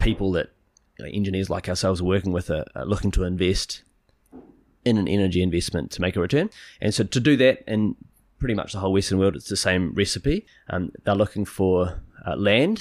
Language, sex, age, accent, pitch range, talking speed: English, male, 30-49, Australian, 90-105 Hz, 195 wpm